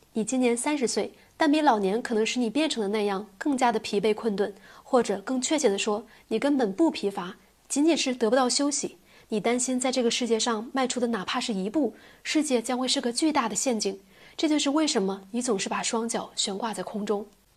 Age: 20-39